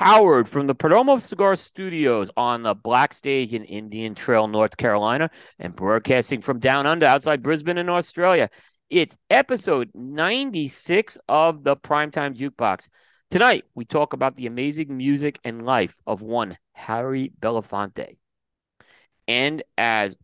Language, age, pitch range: English, 40-59, 115-150 Hz